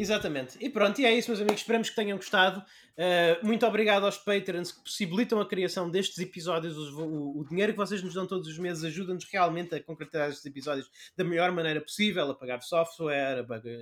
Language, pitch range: Portuguese, 170-210 Hz